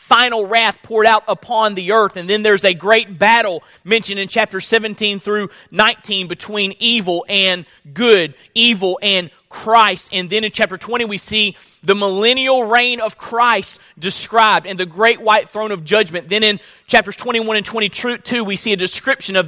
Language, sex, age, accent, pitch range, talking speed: English, male, 30-49, American, 195-235 Hz, 175 wpm